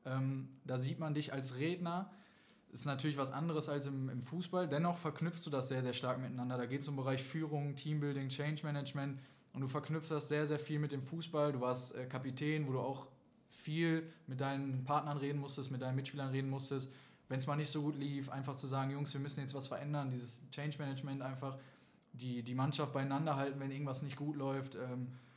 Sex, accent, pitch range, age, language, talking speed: male, German, 130-150 Hz, 20-39, German, 220 wpm